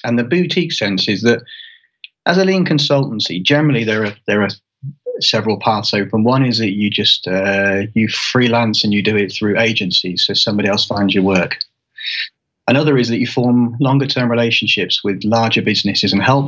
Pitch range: 105-130 Hz